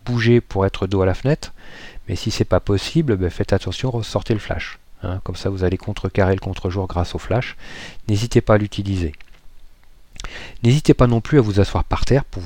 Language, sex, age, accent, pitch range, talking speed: French, male, 40-59, French, 95-110 Hz, 205 wpm